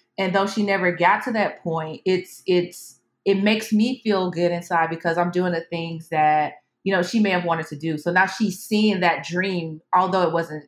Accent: American